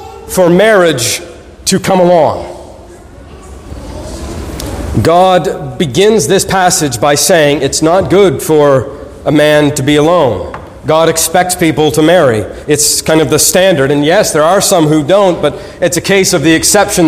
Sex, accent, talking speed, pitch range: male, American, 155 wpm, 145-180 Hz